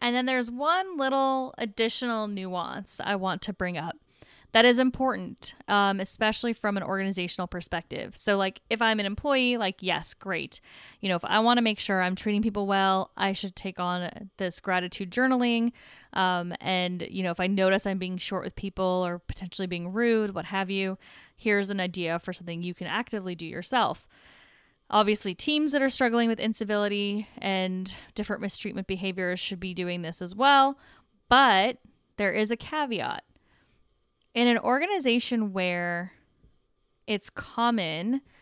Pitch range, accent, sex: 185-230 Hz, American, female